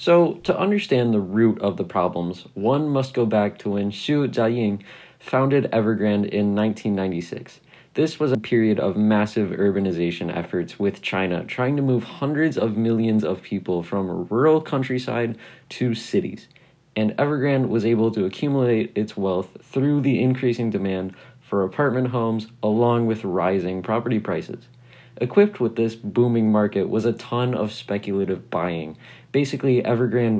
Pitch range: 100-130 Hz